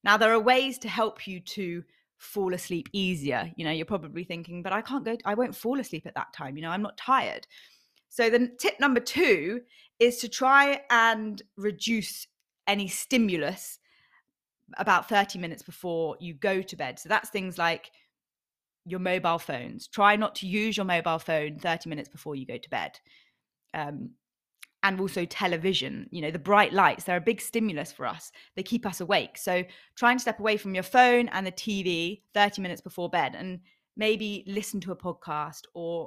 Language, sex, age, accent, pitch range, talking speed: English, female, 30-49, British, 175-230 Hz, 190 wpm